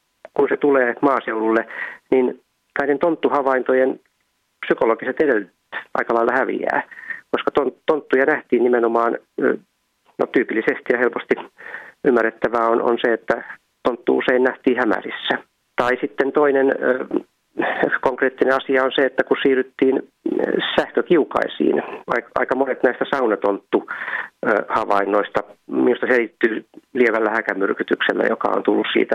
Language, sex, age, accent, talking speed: Finnish, male, 30-49, native, 110 wpm